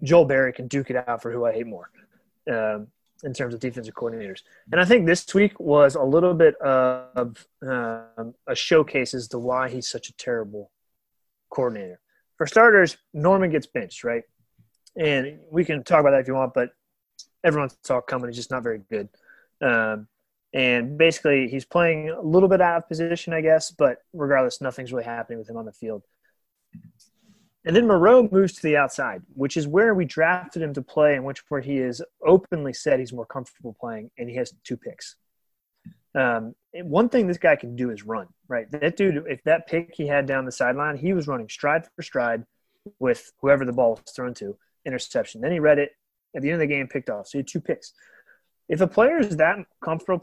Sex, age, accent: male, 30-49, American